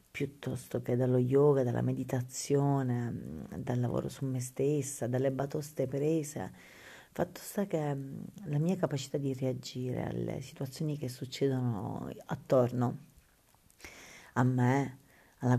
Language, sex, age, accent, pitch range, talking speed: Italian, female, 40-59, native, 130-160 Hz, 115 wpm